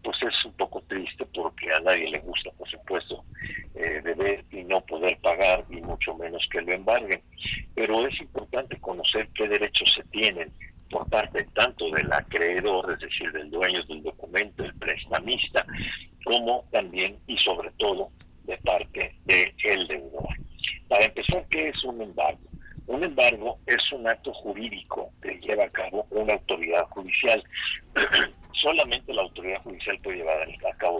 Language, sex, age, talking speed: Spanish, male, 50-69, 155 wpm